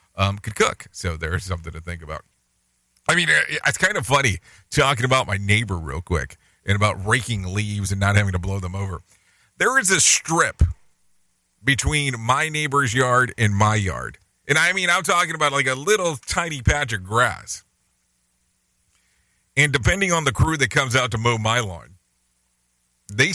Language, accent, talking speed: English, American, 180 wpm